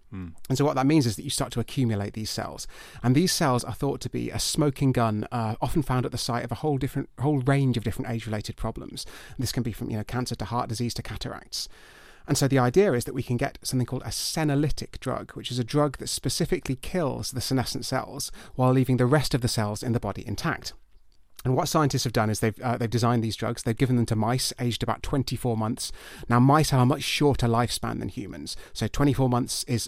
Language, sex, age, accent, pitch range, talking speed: English, male, 30-49, British, 115-130 Hz, 245 wpm